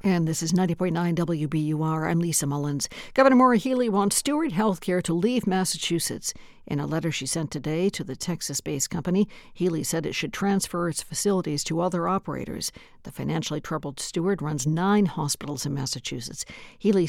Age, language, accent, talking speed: 60-79, English, American, 165 wpm